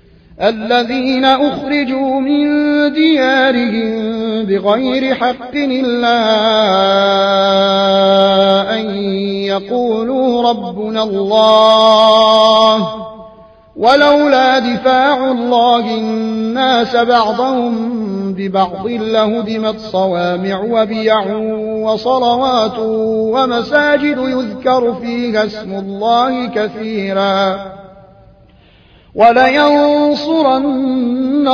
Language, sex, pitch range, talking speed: Arabic, male, 210-245 Hz, 55 wpm